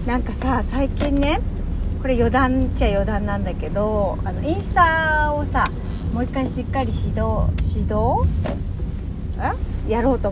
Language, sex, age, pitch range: Japanese, female, 40-59, 85-110 Hz